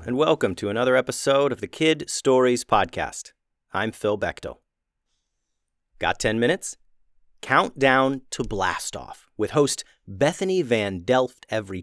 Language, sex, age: English, male, 40-59